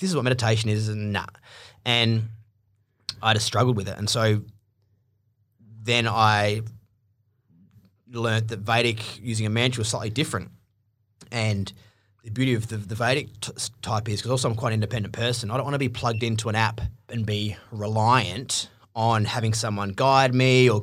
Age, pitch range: 20-39, 105-115 Hz